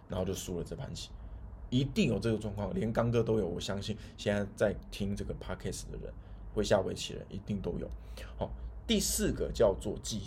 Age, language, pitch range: 20-39, Chinese, 95-115 Hz